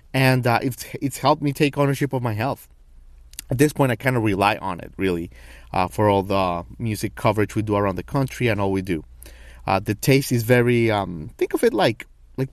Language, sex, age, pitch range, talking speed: English, male, 30-49, 95-130 Hz, 225 wpm